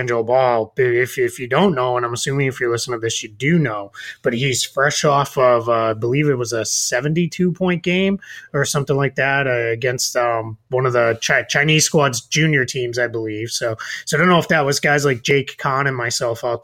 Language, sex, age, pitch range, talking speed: English, male, 30-49, 120-155 Hz, 230 wpm